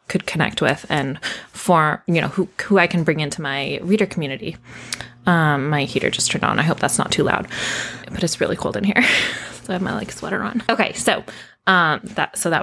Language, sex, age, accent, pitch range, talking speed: English, female, 20-39, American, 160-215 Hz, 225 wpm